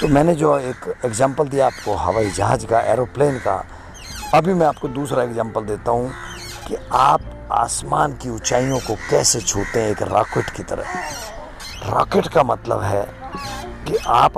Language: English